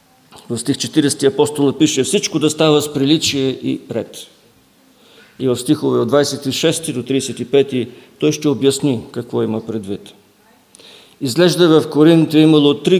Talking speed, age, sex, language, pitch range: 140 wpm, 50-69, male, English, 125-155 Hz